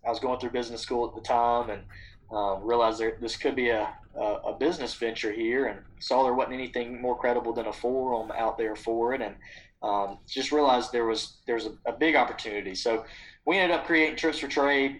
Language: English